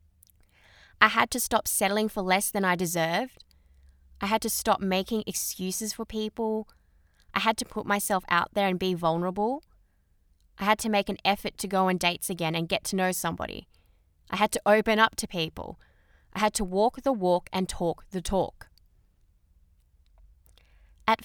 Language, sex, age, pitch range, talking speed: English, female, 20-39, 170-220 Hz, 175 wpm